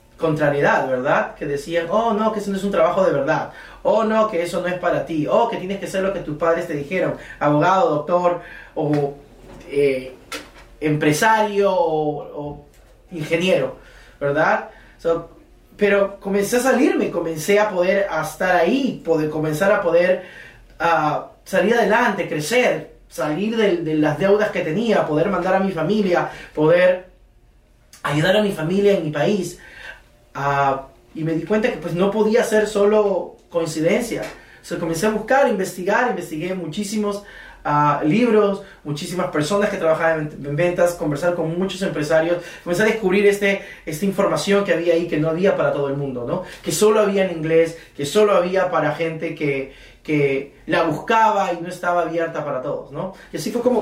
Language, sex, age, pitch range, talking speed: Spanish, male, 30-49, 155-200 Hz, 165 wpm